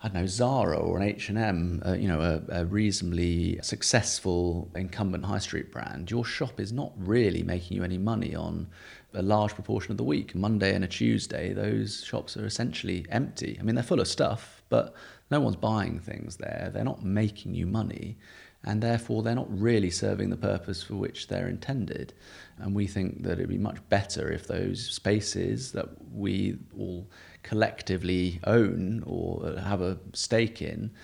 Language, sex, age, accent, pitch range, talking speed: English, male, 30-49, British, 90-110 Hz, 180 wpm